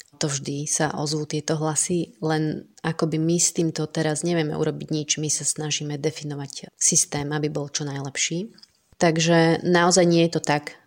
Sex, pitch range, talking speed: female, 145-160 Hz, 165 wpm